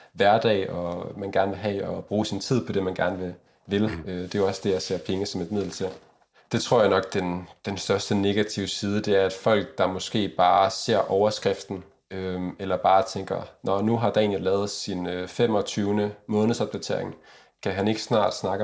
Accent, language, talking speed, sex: native, Danish, 205 wpm, male